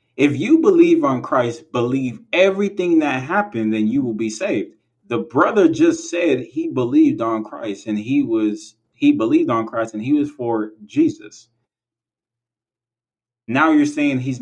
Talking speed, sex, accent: 160 wpm, male, American